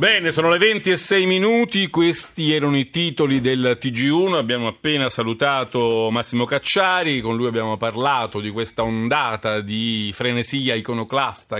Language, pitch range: Italian, 105-135 Hz